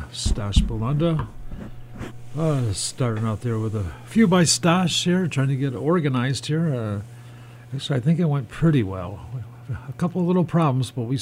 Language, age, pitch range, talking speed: English, 50-69, 115-140 Hz, 175 wpm